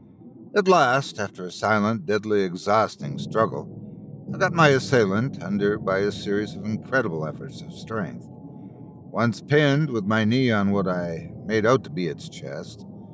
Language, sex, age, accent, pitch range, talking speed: English, male, 60-79, American, 110-155 Hz, 160 wpm